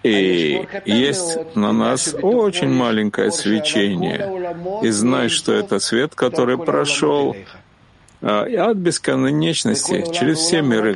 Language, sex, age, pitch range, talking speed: Russian, male, 40-59, 110-155 Hz, 115 wpm